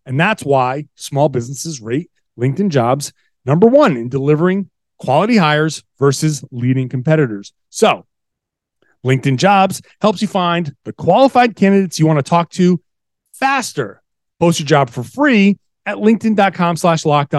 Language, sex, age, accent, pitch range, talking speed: English, male, 30-49, American, 130-190 Hz, 140 wpm